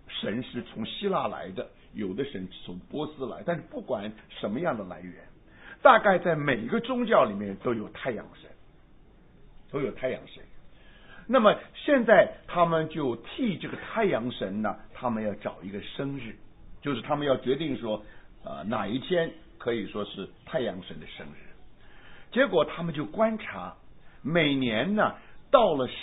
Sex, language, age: male, English, 60-79